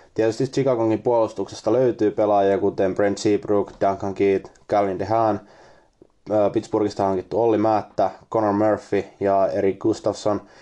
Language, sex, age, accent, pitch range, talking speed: Finnish, male, 20-39, native, 100-110 Hz, 115 wpm